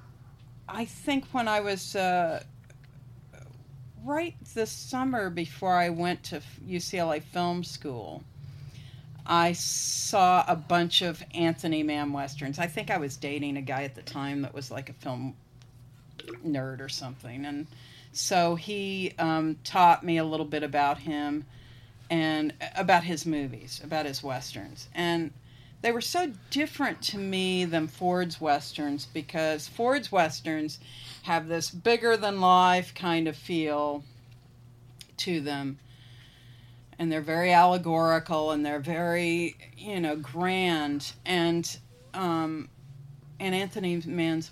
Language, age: English, 50-69